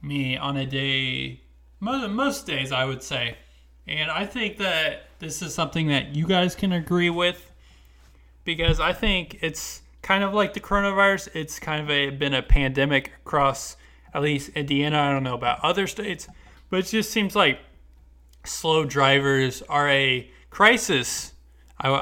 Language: English